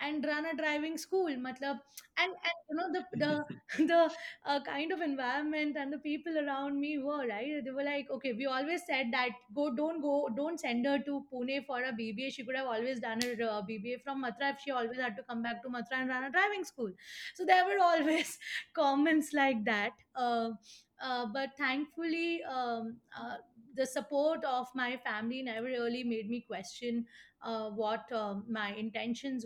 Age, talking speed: 20-39, 190 wpm